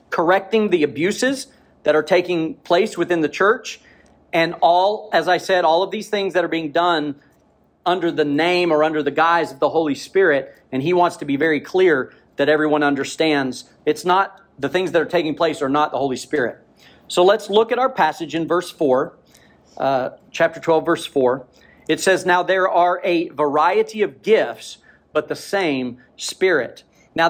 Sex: male